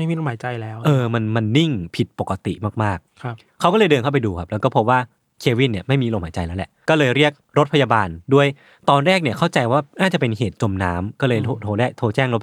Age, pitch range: 20-39, 110-150 Hz